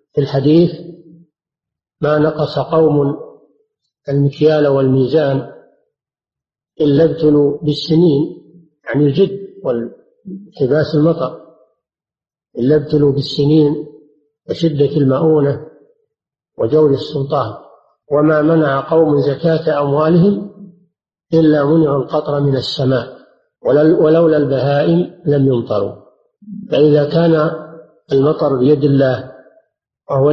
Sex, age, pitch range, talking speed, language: male, 50-69, 140-160 Hz, 85 wpm, Arabic